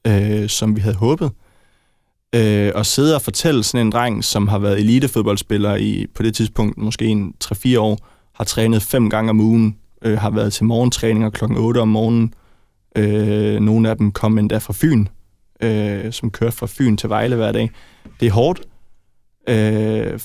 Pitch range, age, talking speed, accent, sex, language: 105-120 Hz, 20-39, 180 wpm, native, male, Danish